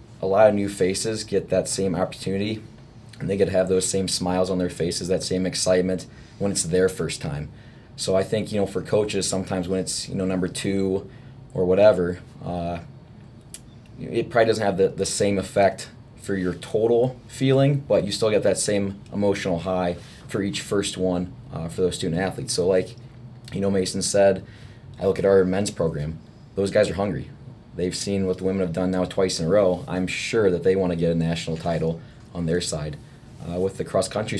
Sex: male